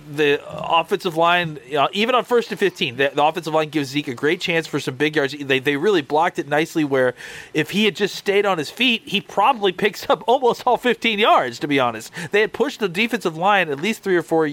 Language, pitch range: English, 145-190 Hz